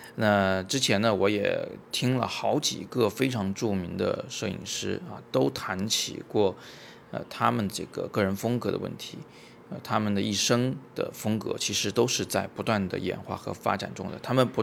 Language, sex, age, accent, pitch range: Chinese, male, 20-39, native, 95-120 Hz